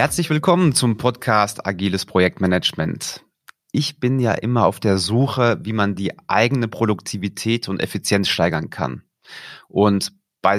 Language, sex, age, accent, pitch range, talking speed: German, male, 30-49, German, 95-130 Hz, 135 wpm